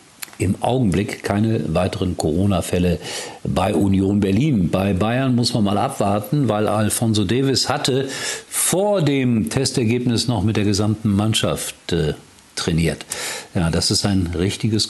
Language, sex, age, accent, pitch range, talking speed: German, male, 50-69, German, 95-120 Hz, 135 wpm